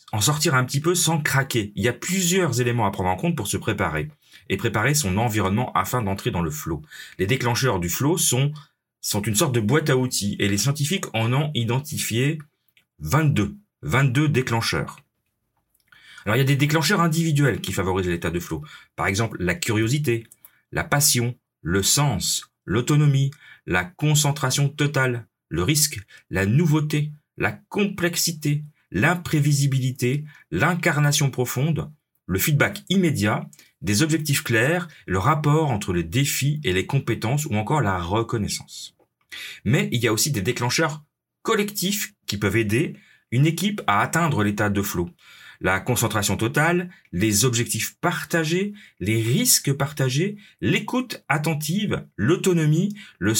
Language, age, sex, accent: French, 30-49, male, French